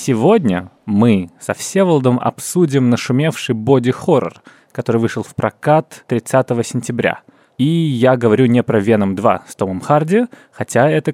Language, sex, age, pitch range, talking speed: Russian, male, 20-39, 110-140 Hz, 135 wpm